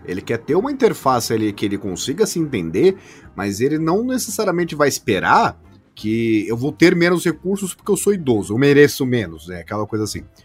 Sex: male